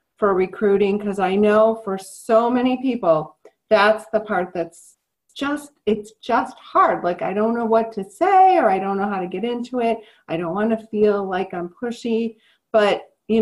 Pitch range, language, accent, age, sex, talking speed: 190-240 Hz, English, American, 40-59, female, 190 wpm